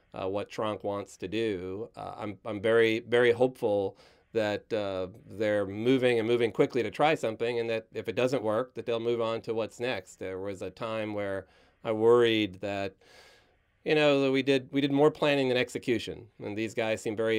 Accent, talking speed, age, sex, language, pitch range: American, 205 wpm, 40-59, male, English, 100-125 Hz